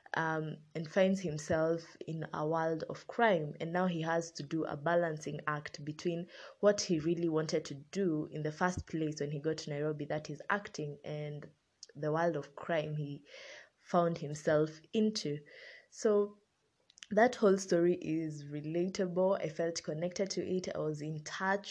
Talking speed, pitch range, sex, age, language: 170 wpm, 150-180 Hz, female, 20-39, English